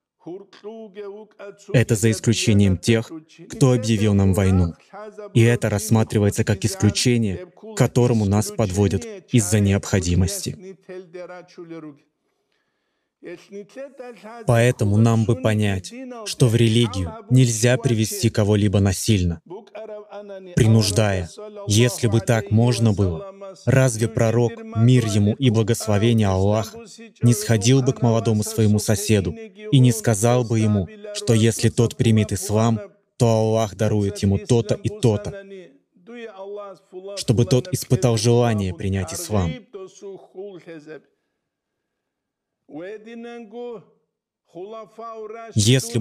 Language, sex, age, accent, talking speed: Russian, male, 20-39, native, 95 wpm